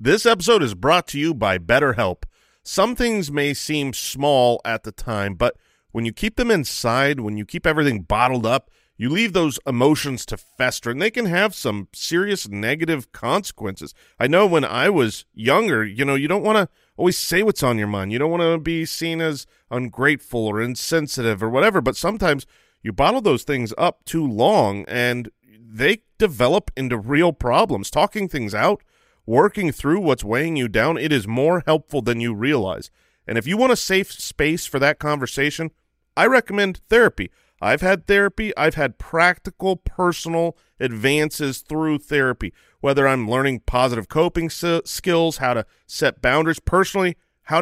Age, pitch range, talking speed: 40-59, 120-165 Hz, 175 wpm